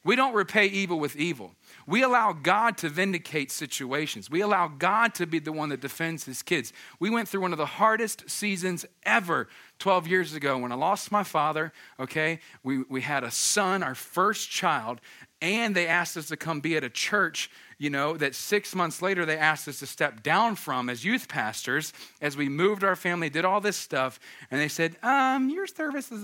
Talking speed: 205 wpm